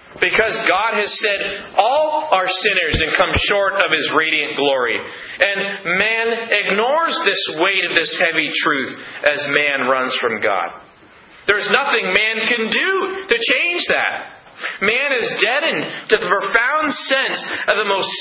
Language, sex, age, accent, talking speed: English, male, 40-59, American, 150 wpm